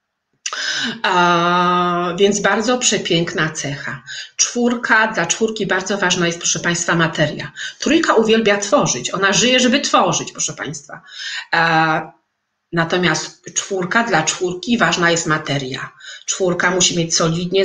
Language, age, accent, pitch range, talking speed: Polish, 30-49, native, 170-205 Hz, 120 wpm